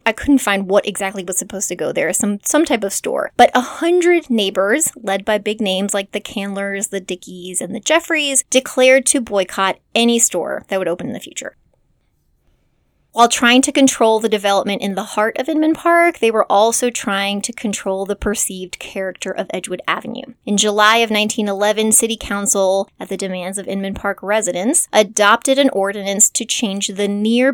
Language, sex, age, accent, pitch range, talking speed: English, female, 20-39, American, 195-250 Hz, 185 wpm